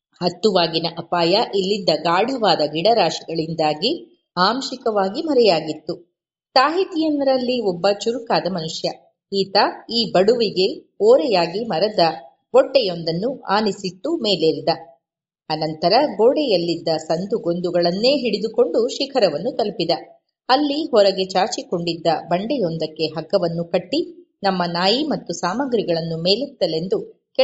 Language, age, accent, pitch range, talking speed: English, 30-49, Indian, 170-245 Hz, 85 wpm